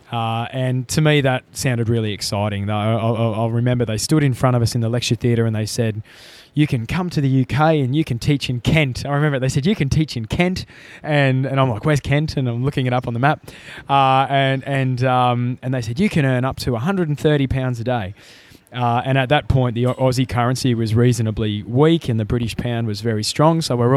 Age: 20-39